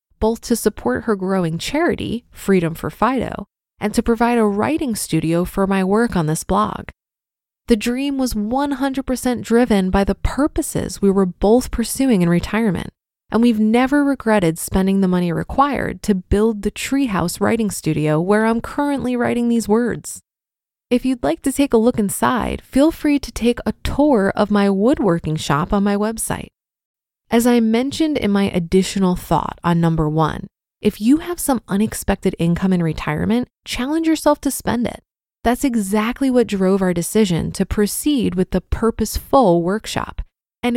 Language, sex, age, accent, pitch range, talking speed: English, female, 20-39, American, 195-255 Hz, 165 wpm